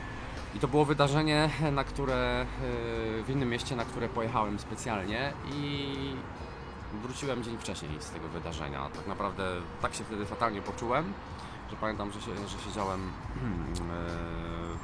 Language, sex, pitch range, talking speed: Polish, male, 90-125 Hz, 135 wpm